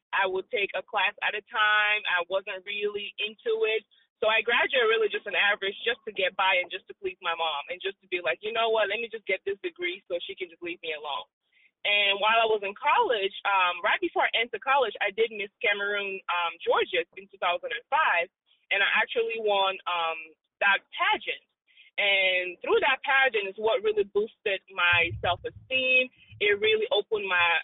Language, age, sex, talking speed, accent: English, 20-39, female, 200 wpm, American